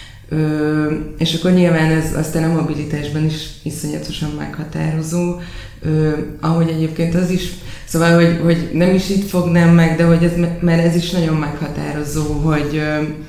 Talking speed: 150 wpm